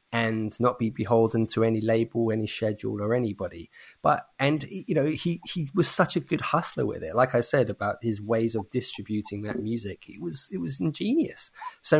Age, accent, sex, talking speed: 20-39, British, male, 200 wpm